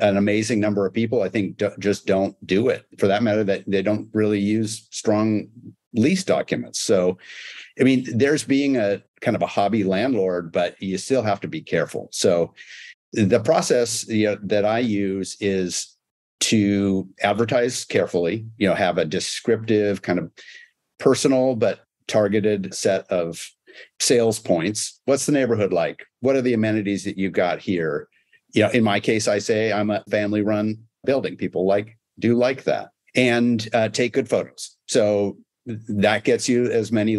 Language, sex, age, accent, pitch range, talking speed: English, male, 50-69, American, 100-120 Hz, 175 wpm